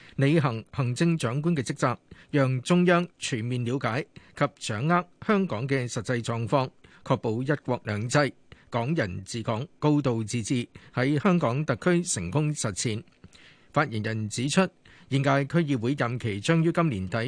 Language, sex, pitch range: Chinese, male, 120-155 Hz